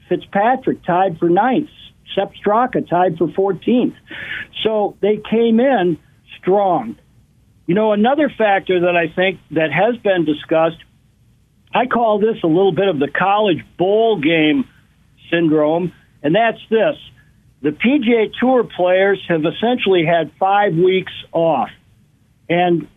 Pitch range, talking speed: 165-215 Hz, 135 wpm